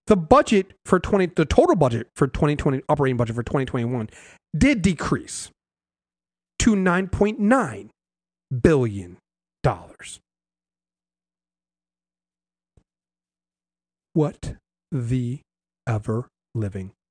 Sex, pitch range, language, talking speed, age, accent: male, 110-180 Hz, English, 75 wpm, 40-59, American